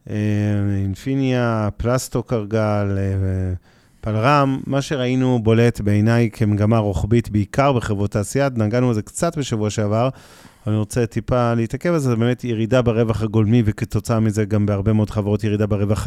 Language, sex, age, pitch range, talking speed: Hebrew, male, 30-49, 105-125 Hz, 135 wpm